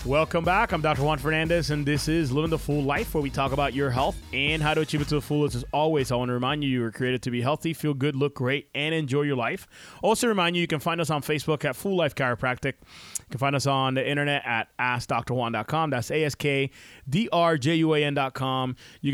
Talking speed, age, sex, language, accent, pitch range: 255 wpm, 30-49, male, English, American, 130-150 Hz